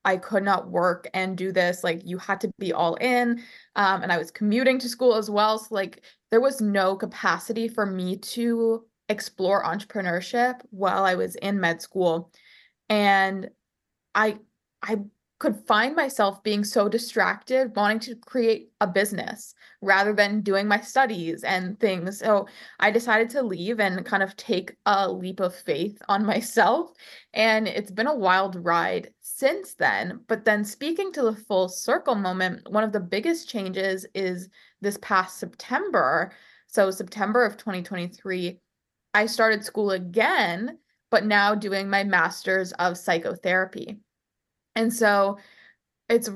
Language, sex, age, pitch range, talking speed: English, female, 20-39, 185-225 Hz, 155 wpm